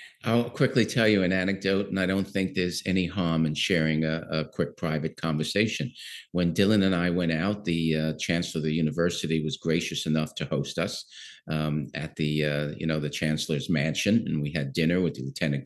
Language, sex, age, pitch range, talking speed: English, male, 50-69, 85-120 Hz, 205 wpm